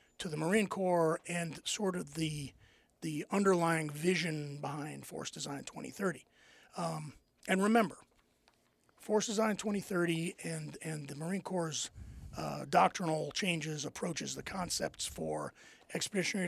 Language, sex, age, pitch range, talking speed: English, male, 40-59, 160-205 Hz, 125 wpm